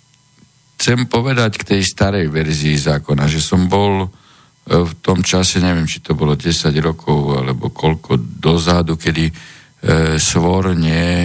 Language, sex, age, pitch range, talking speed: Slovak, male, 50-69, 75-90 Hz, 135 wpm